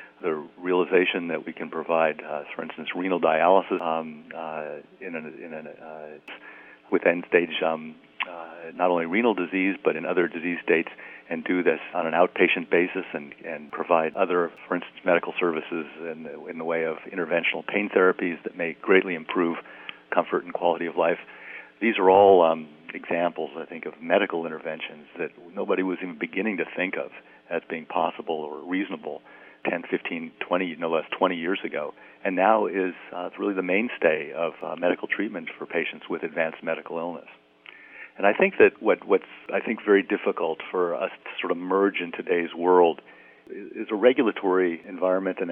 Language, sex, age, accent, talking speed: English, male, 50-69, American, 180 wpm